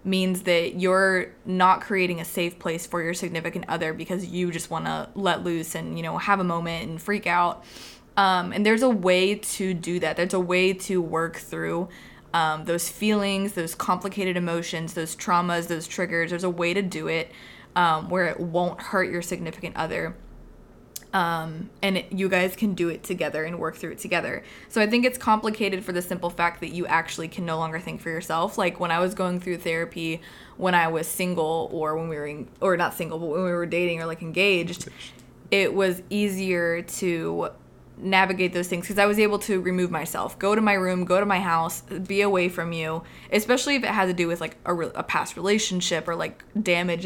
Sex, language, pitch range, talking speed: female, English, 165-190 Hz, 210 wpm